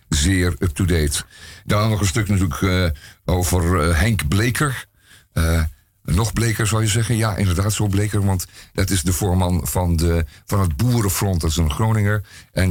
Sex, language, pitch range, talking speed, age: male, Dutch, 85-105 Hz, 175 wpm, 50-69